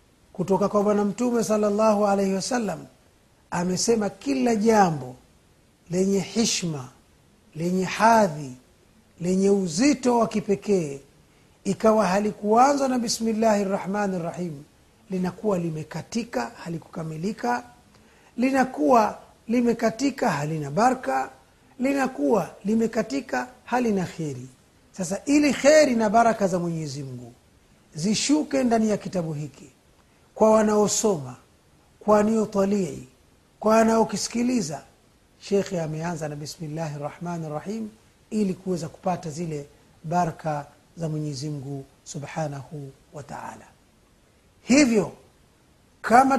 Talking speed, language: 90 wpm, Swahili